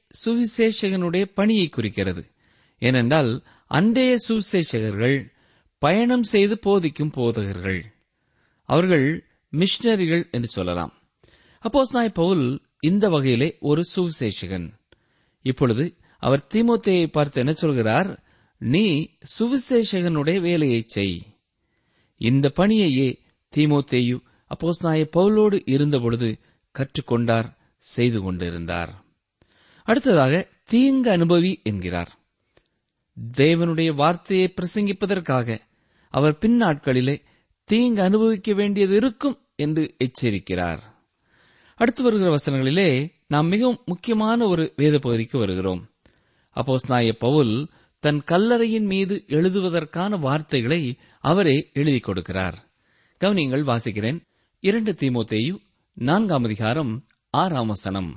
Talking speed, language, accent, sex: 90 wpm, Tamil, native, male